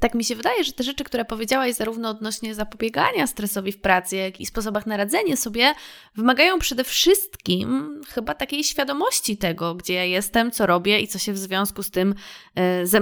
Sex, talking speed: female, 185 wpm